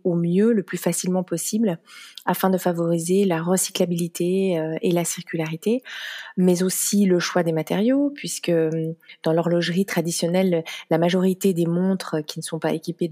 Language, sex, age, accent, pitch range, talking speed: French, female, 30-49, French, 165-185 Hz, 150 wpm